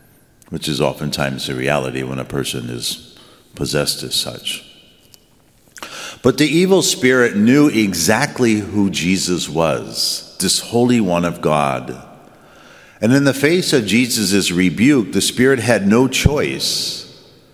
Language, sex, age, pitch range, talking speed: English, male, 50-69, 80-110 Hz, 130 wpm